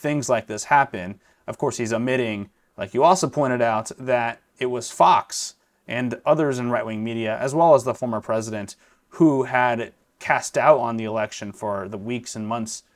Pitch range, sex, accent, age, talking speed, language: 110-135 Hz, male, American, 30-49, 185 wpm, English